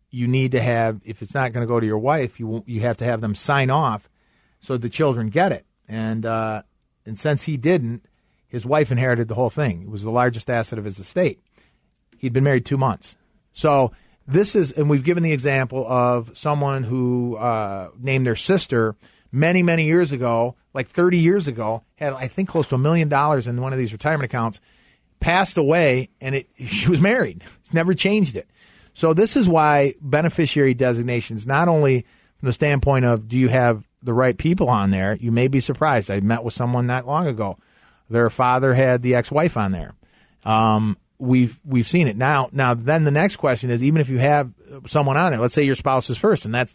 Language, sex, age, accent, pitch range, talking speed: English, male, 40-59, American, 120-155 Hz, 210 wpm